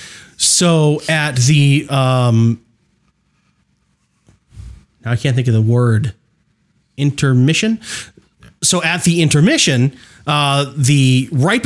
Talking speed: 95 wpm